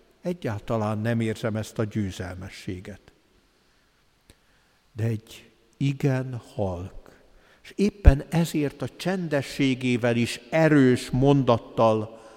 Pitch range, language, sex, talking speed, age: 110-140 Hz, Hungarian, male, 85 wpm, 60-79